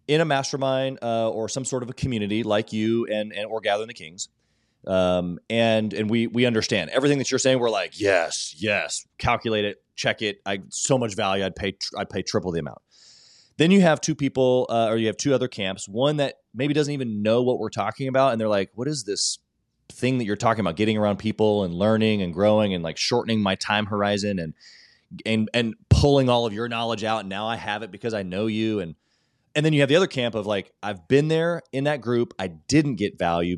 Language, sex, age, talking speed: English, male, 30-49, 235 wpm